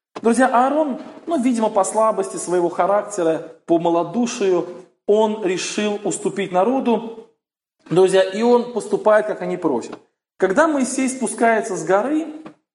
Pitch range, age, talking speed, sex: 190-250 Hz, 20-39, 120 wpm, male